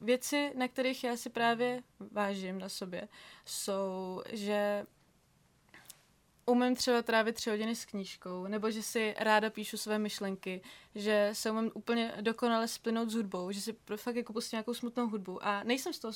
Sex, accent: female, native